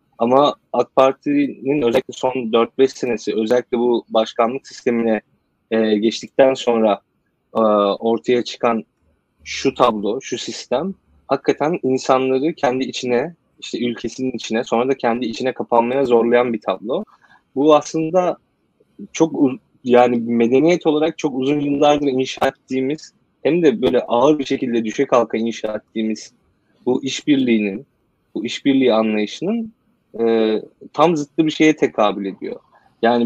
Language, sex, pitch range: Turkish, male, 115-135 Hz